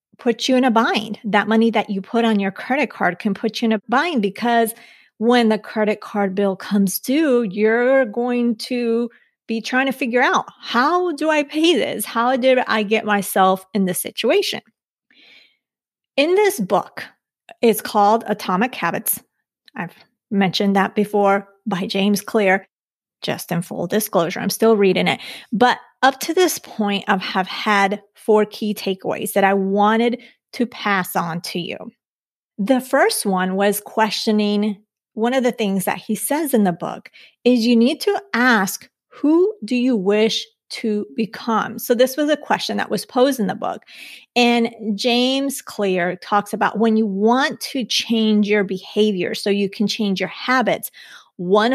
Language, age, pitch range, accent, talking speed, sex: English, 30-49, 200-245 Hz, American, 170 wpm, female